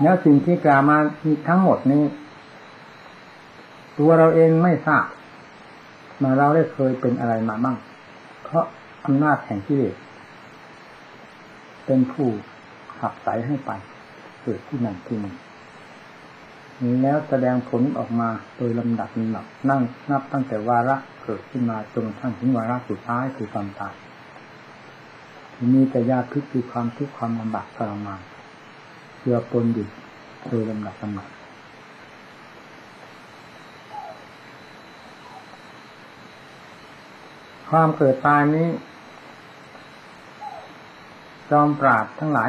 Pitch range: 115-145 Hz